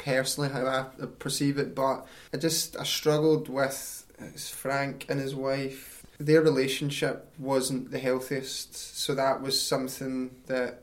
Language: English